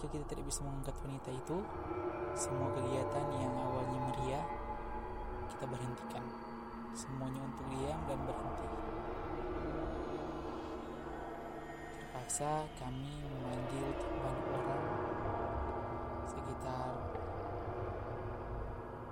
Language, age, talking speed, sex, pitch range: Indonesian, 20-39, 75 wpm, male, 80-130 Hz